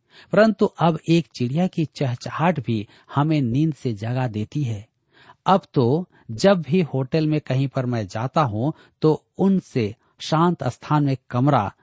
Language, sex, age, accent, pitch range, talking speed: Hindi, male, 50-69, native, 120-165 Hz, 150 wpm